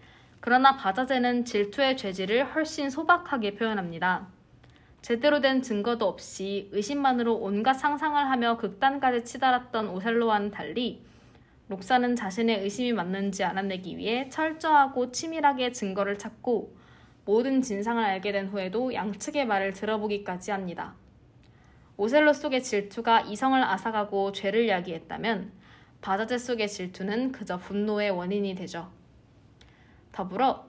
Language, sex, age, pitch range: Korean, female, 20-39, 200-265 Hz